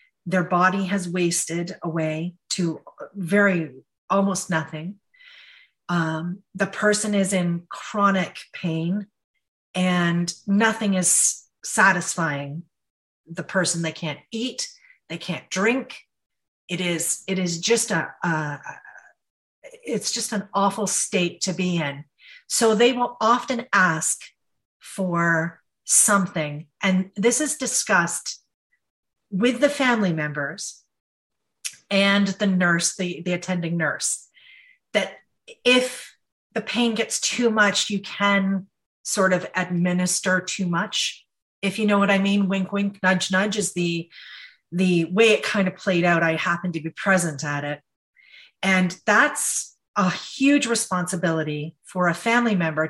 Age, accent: 40-59, American